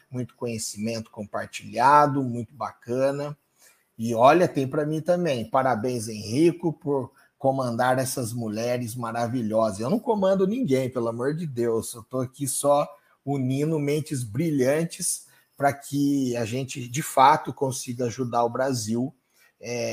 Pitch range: 125-155 Hz